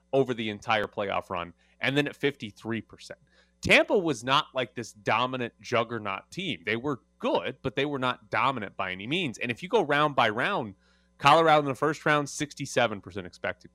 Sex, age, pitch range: male, 30-49, 105-140 Hz